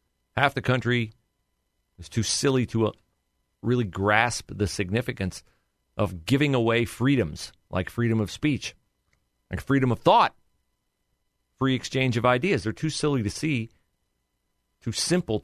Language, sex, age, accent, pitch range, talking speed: English, male, 40-59, American, 90-135 Hz, 130 wpm